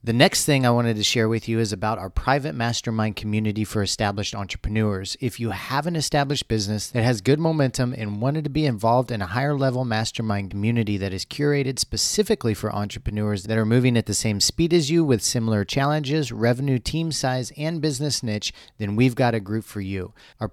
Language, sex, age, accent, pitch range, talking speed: English, male, 40-59, American, 105-140 Hz, 210 wpm